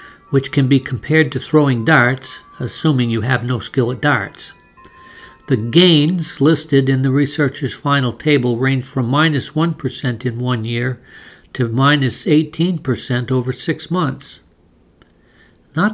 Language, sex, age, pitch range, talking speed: English, male, 60-79, 125-155 Hz, 135 wpm